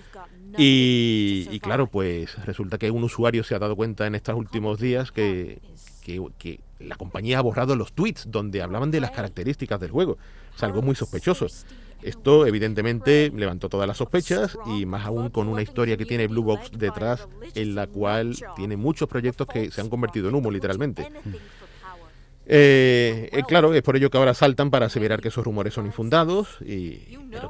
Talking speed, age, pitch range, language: 175 wpm, 40-59, 105-130 Hz, Spanish